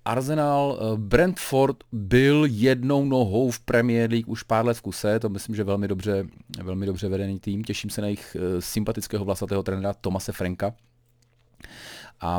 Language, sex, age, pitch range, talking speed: Czech, male, 30-49, 95-120 Hz, 160 wpm